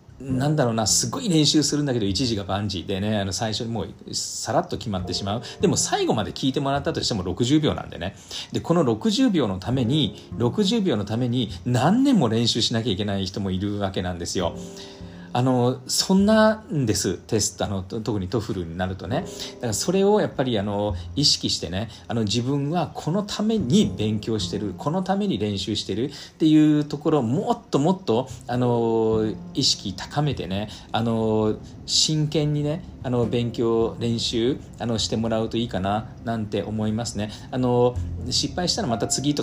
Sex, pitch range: male, 105-145 Hz